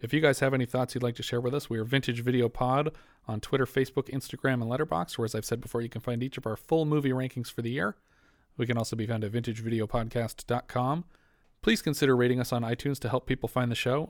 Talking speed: 250 wpm